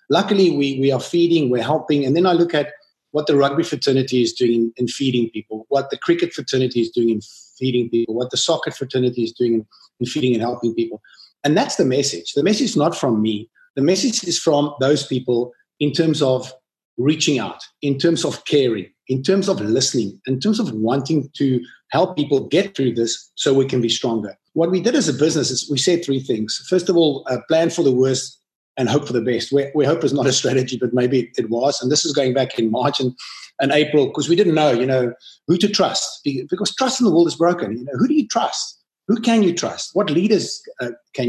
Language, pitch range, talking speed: English, 125-165 Hz, 235 wpm